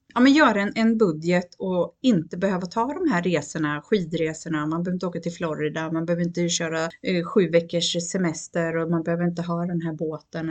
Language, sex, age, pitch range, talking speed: Swedish, female, 30-49, 165-225 Hz, 205 wpm